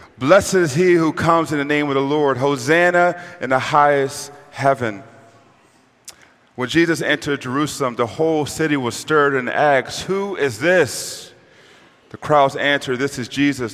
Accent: American